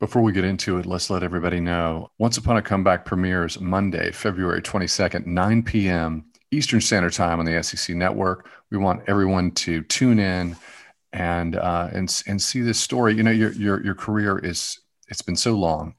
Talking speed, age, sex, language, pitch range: 190 wpm, 40-59, male, English, 85-100 Hz